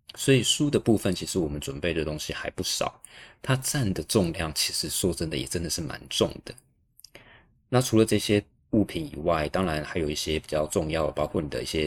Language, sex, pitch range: Chinese, male, 80-105 Hz